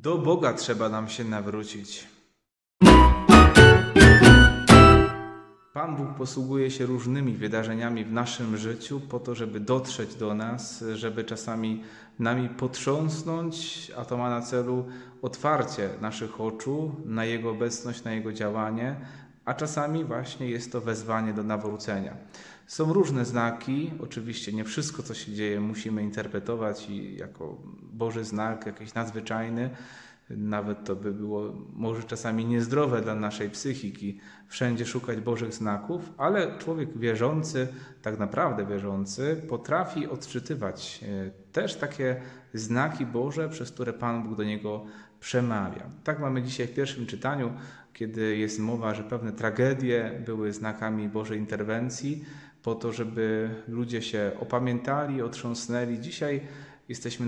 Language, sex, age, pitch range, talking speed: Polish, male, 30-49, 110-130 Hz, 130 wpm